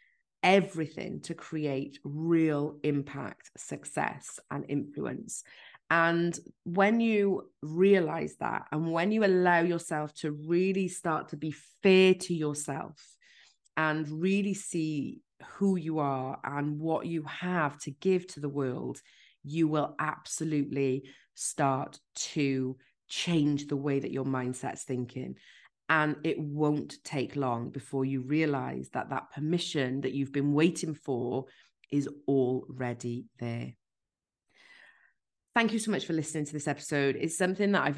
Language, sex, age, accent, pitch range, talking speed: English, female, 30-49, British, 135-170 Hz, 135 wpm